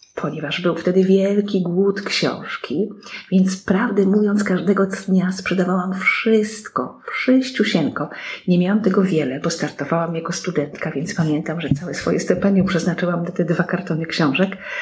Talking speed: 140 wpm